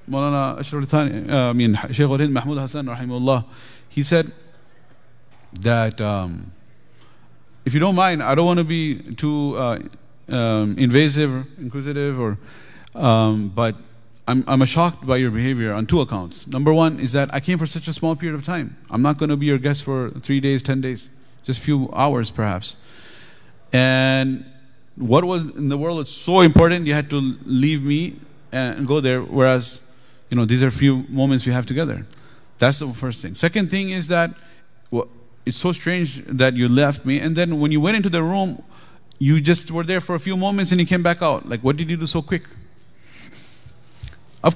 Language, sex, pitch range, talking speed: English, male, 125-155 Hz, 185 wpm